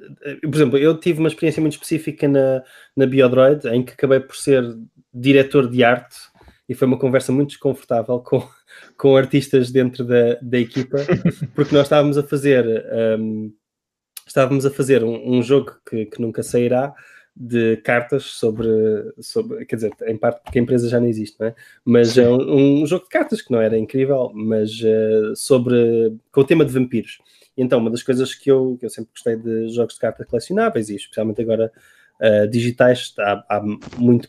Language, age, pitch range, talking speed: English, 20-39, 120-150 Hz, 180 wpm